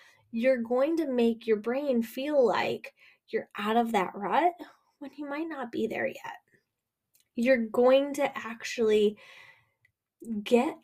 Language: English